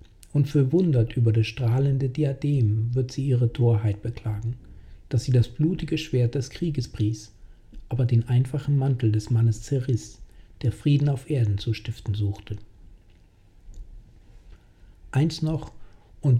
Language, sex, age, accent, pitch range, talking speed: German, male, 60-79, German, 105-135 Hz, 130 wpm